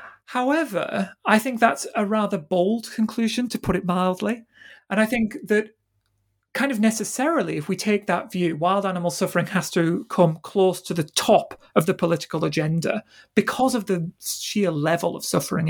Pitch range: 165-215 Hz